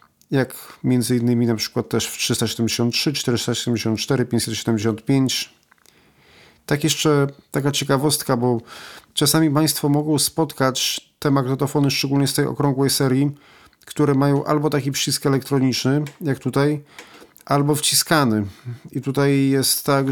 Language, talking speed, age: Polish, 120 wpm, 40-59